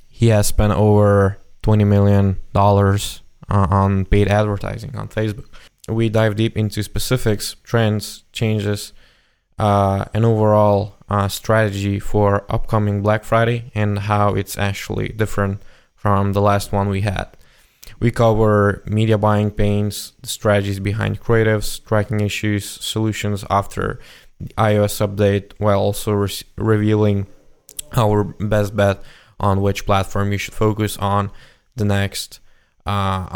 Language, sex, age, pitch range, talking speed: English, male, 20-39, 100-110 Hz, 125 wpm